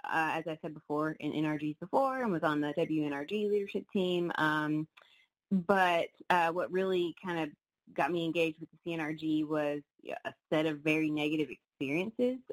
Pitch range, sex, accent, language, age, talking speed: 155-180 Hz, female, American, English, 20-39, 170 wpm